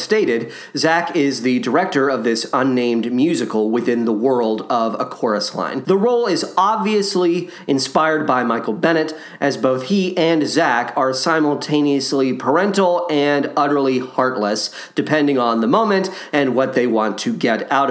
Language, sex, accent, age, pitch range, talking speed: English, male, American, 40-59, 135-185 Hz, 155 wpm